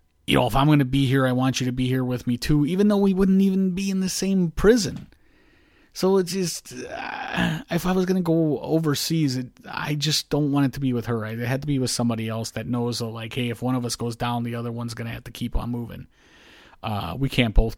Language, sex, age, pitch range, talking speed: English, male, 30-49, 115-130 Hz, 265 wpm